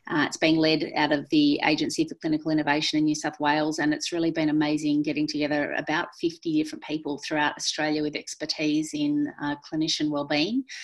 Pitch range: 150-175 Hz